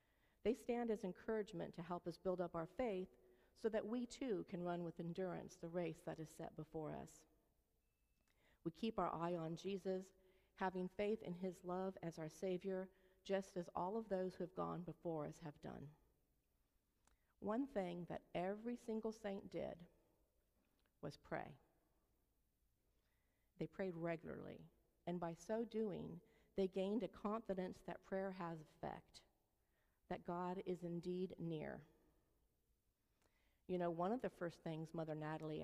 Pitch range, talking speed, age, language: 165-195 Hz, 150 wpm, 50-69, English